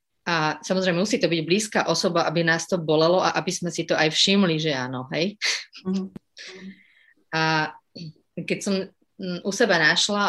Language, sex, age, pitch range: Slovak, female, 30-49, 160-190 Hz